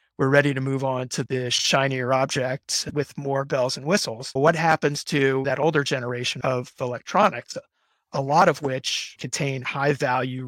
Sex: male